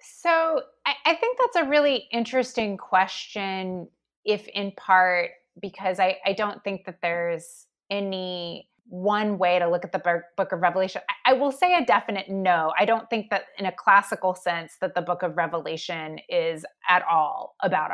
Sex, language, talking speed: female, English, 175 wpm